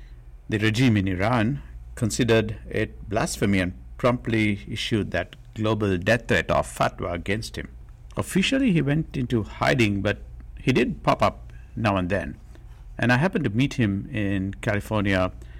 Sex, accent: male, Indian